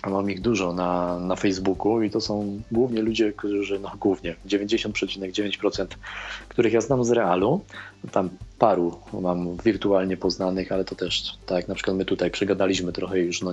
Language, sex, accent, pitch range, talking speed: Polish, male, native, 95-115 Hz, 165 wpm